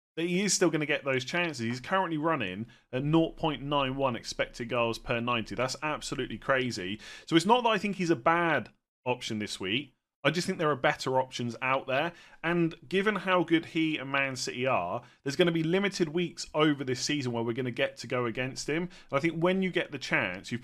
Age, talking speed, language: 30-49, 220 wpm, English